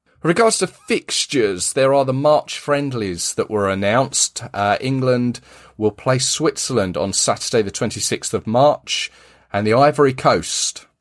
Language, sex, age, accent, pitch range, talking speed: English, male, 40-59, British, 90-130 Hz, 145 wpm